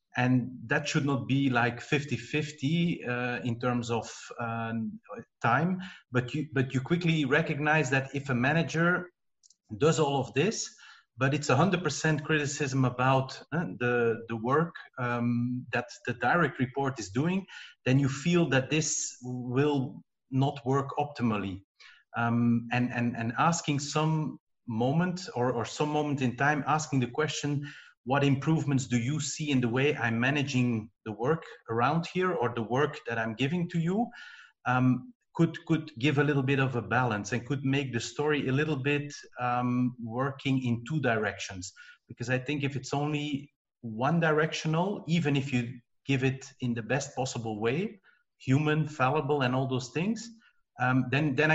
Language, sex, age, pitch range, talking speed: English, male, 40-59, 125-150 Hz, 160 wpm